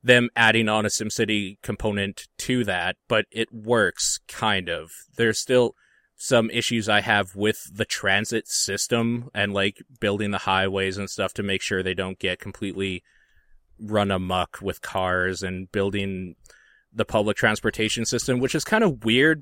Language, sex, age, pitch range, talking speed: English, male, 20-39, 100-115 Hz, 160 wpm